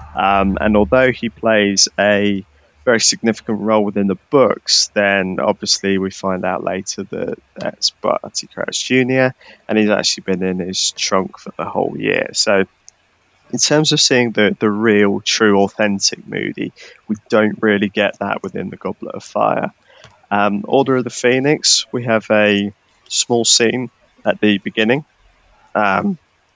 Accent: British